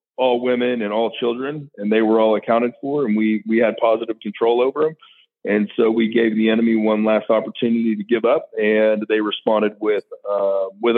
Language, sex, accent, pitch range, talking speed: English, male, American, 105-120 Hz, 200 wpm